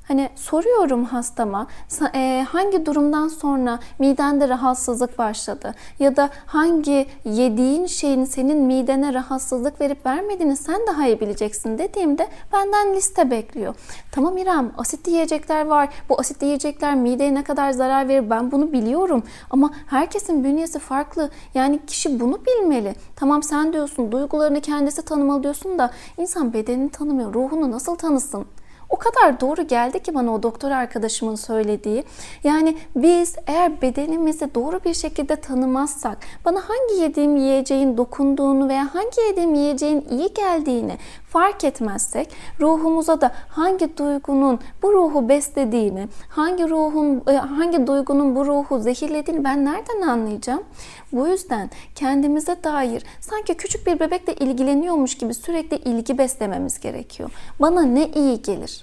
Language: Turkish